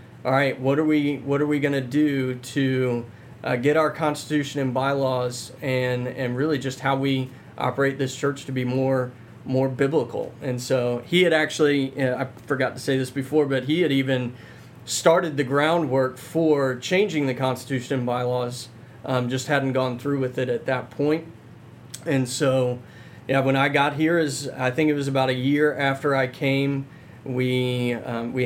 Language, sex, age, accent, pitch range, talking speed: English, male, 30-49, American, 125-140 Hz, 185 wpm